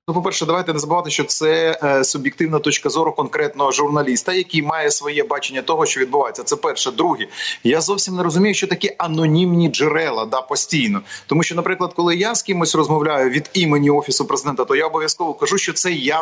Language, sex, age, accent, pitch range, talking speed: Ukrainian, male, 30-49, native, 150-180 Hz, 190 wpm